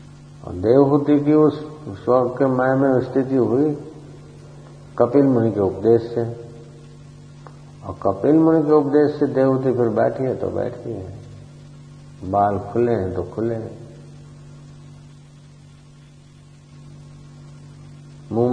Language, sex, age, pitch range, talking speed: English, male, 50-69, 115-145 Hz, 105 wpm